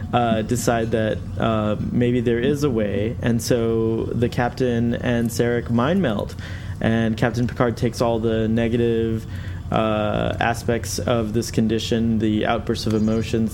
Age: 20-39